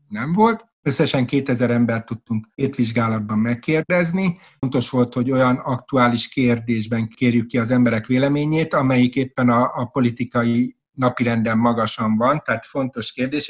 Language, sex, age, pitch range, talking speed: Hungarian, male, 50-69, 115-140 Hz, 135 wpm